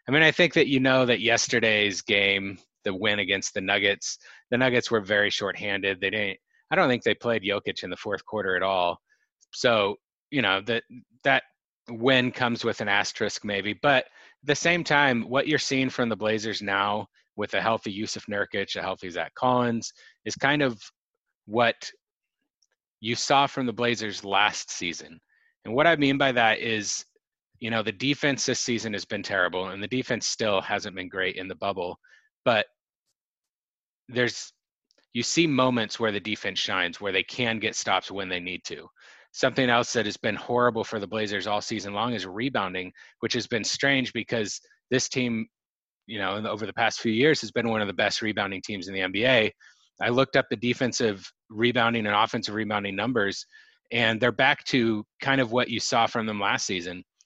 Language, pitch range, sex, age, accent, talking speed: English, 100-130 Hz, male, 30-49, American, 190 wpm